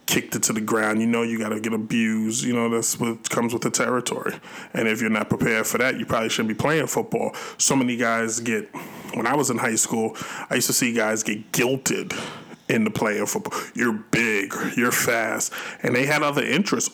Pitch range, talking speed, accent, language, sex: 115-145 Hz, 225 wpm, American, English, male